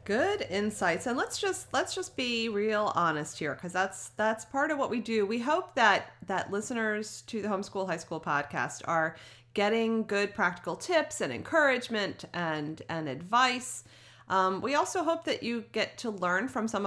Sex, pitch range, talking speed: female, 170-245 Hz, 180 wpm